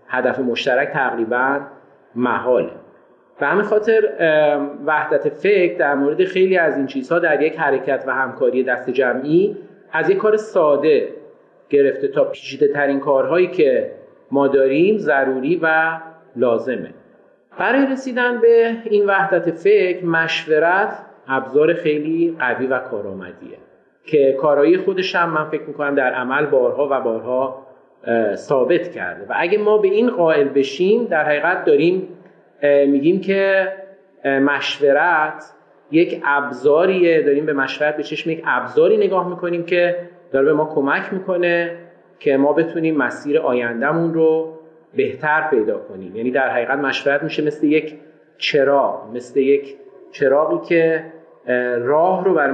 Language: Persian